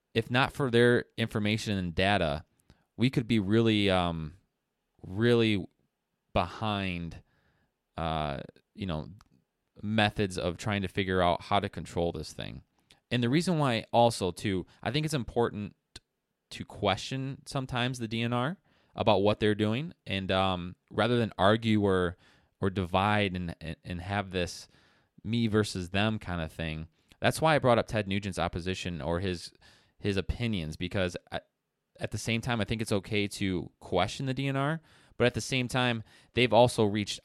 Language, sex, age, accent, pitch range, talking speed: English, male, 20-39, American, 90-110 Hz, 160 wpm